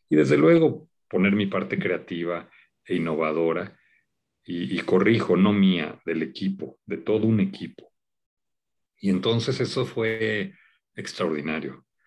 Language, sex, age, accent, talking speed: Spanish, male, 50-69, Mexican, 125 wpm